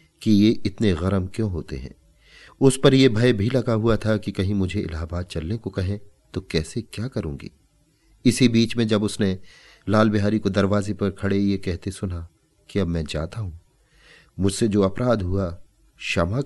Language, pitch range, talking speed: Hindi, 90-130 Hz, 180 wpm